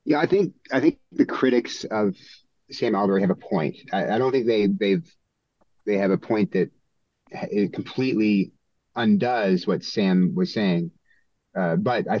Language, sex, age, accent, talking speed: English, male, 30-49, American, 165 wpm